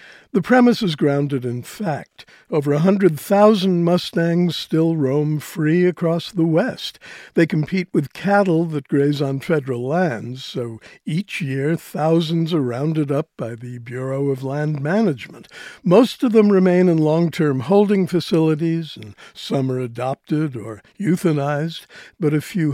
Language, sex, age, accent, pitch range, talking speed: English, male, 60-79, American, 145-185 Hz, 145 wpm